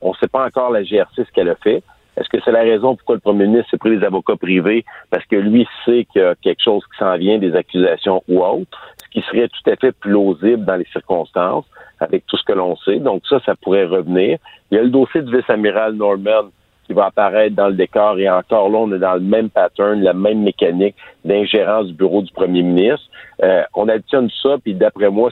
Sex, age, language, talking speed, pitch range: male, 50-69, French, 240 wpm, 100-120 Hz